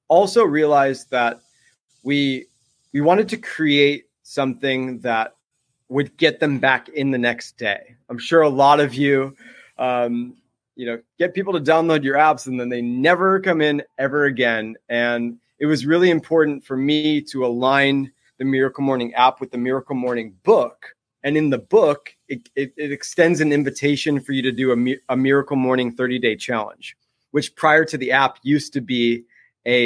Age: 30-49